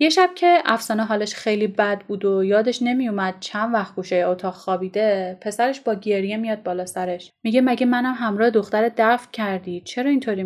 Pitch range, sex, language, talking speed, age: 190-240 Hz, female, Persian, 180 wpm, 10-29